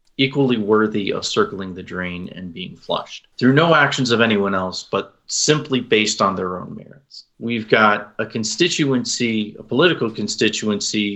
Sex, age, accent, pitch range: male, 40-59, American, 100-130 Hz